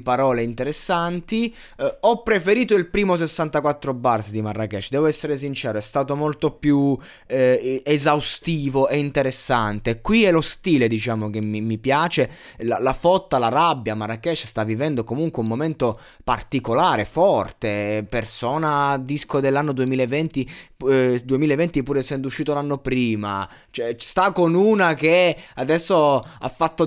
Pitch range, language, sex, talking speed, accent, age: 125-160 Hz, Italian, male, 140 wpm, native, 20-39